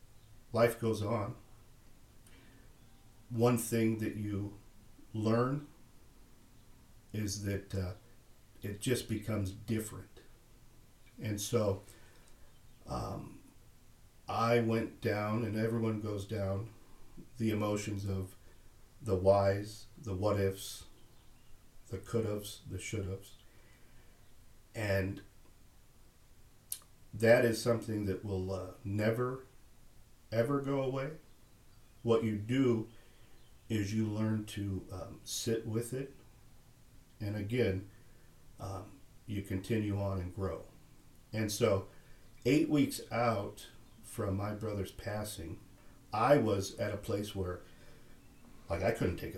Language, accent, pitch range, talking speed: English, American, 100-115 Hz, 105 wpm